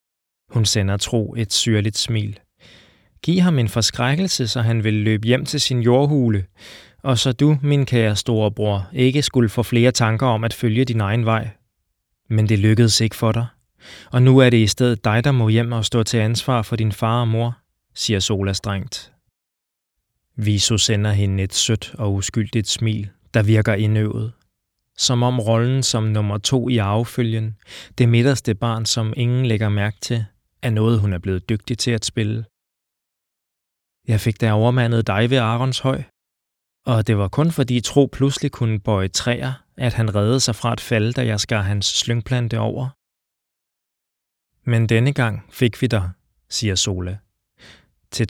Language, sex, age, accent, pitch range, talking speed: Danish, male, 20-39, native, 105-120 Hz, 175 wpm